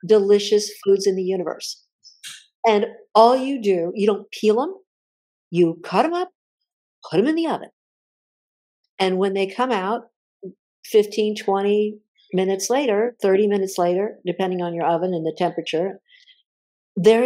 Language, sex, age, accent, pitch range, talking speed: English, female, 50-69, American, 185-235 Hz, 145 wpm